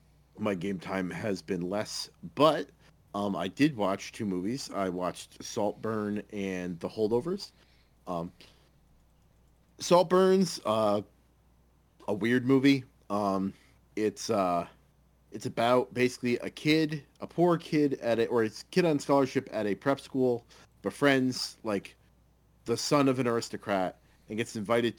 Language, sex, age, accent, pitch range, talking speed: English, male, 40-59, American, 95-125 Hz, 140 wpm